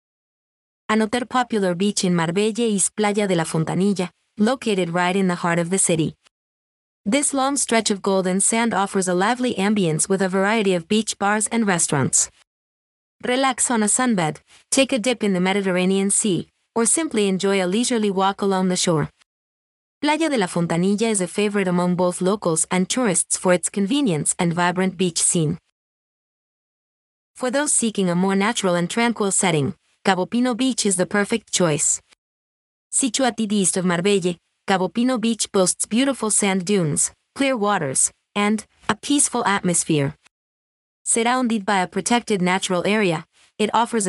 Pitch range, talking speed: 180-230 Hz, 160 wpm